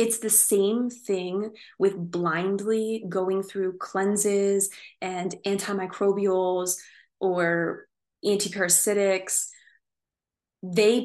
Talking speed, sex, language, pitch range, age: 75 wpm, female, English, 185-220 Hz, 20-39